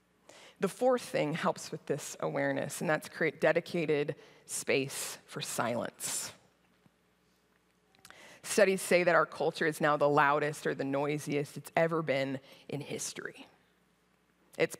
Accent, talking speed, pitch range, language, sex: American, 130 wpm, 140-165 Hz, English, female